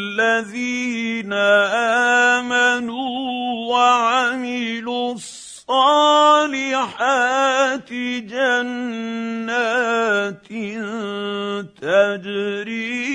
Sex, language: male, Arabic